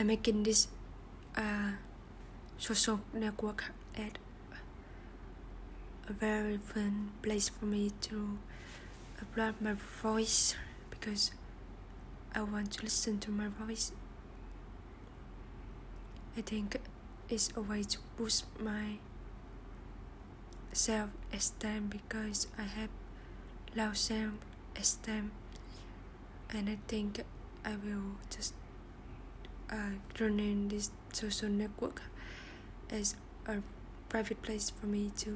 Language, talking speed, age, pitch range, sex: English, 95 wpm, 20-39, 195-215 Hz, female